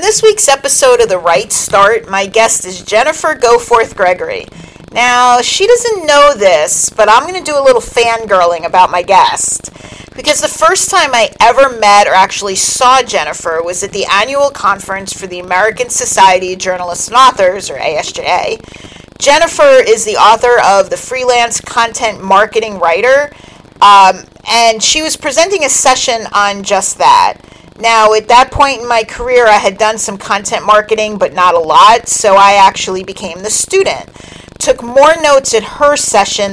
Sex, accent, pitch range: female, American, 195-285 Hz